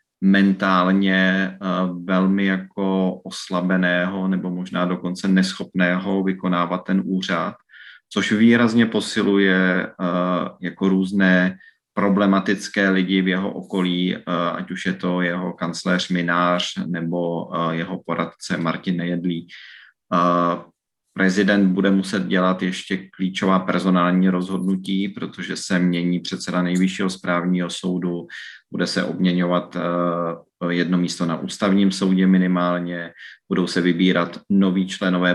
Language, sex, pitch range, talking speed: Czech, male, 90-100 Hz, 105 wpm